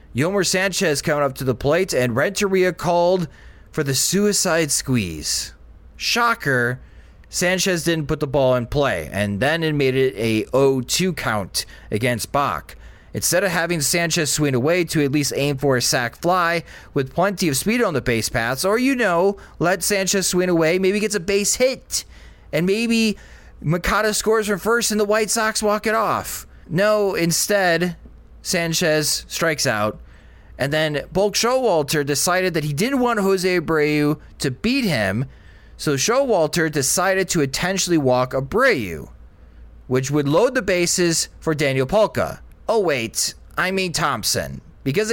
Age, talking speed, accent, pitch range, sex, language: 30-49, 160 wpm, American, 130-195 Hz, male, English